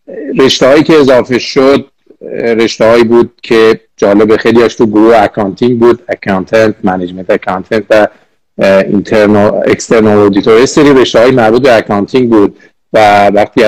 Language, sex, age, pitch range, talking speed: Persian, male, 50-69, 100-115 Hz, 135 wpm